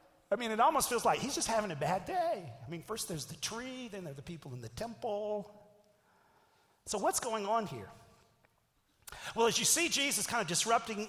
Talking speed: 210 wpm